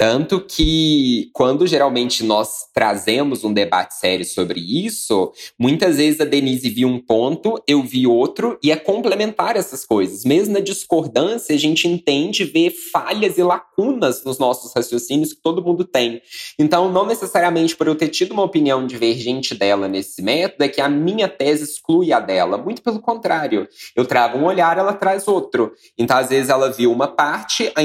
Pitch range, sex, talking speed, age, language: 125-195 Hz, male, 175 wpm, 20-39, Portuguese